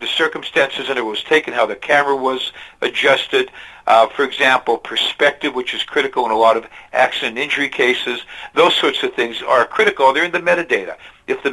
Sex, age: male, 60-79